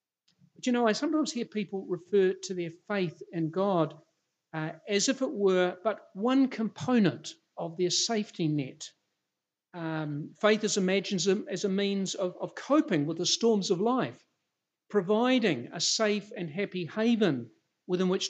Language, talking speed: English, 155 wpm